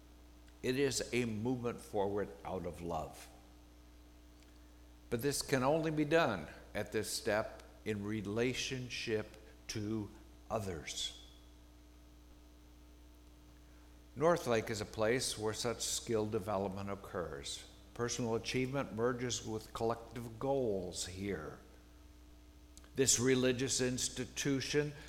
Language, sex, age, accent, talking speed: English, male, 60-79, American, 95 wpm